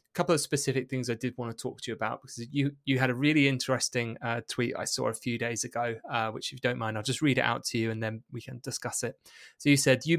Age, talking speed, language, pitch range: 20-39, 295 wpm, English, 120-140 Hz